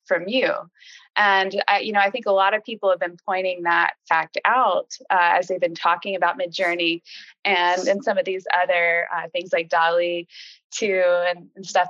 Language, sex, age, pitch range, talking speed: English, female, 20-39, 170-205 Hz, 195 wpm